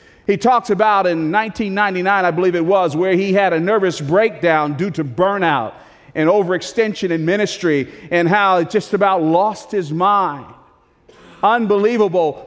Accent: American